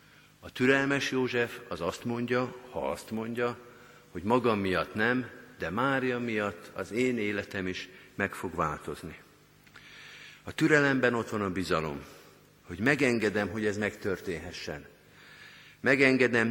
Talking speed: 125 wpm